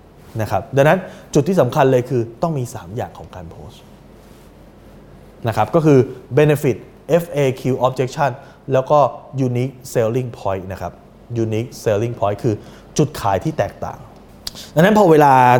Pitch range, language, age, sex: 105-145 Hz, Thai, 20-39, male